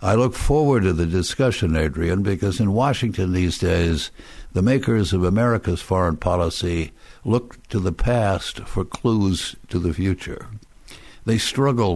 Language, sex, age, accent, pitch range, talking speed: English, male, 60-79, American, 85-115 Hz, 145 wpm